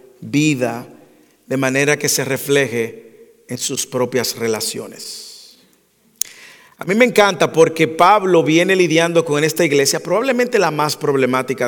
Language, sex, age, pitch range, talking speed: English, male, 40-59, 140-225 Hz, 130 wpm